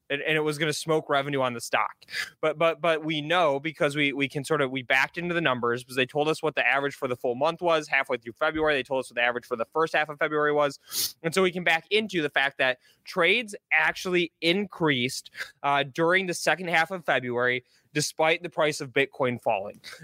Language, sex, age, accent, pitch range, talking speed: English, male, 20-39, American, 135-165 Hz, 235 wpm